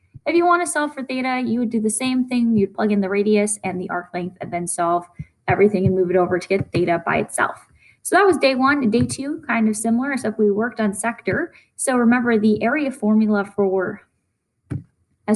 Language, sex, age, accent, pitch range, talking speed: English, female, 10-29, American, 195-250 Hz, 225 wpm